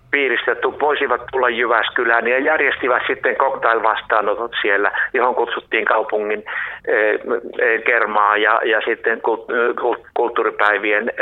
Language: Finnish